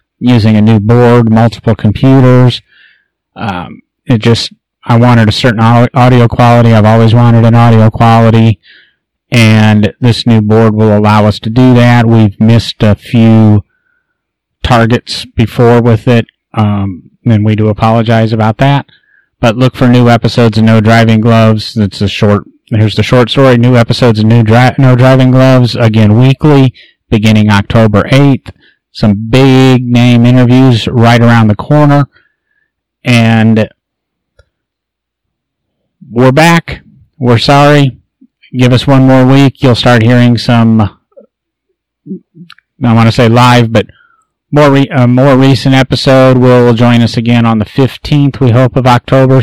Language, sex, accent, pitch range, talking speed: English, male, American, 115-130 Hz, 140 wpm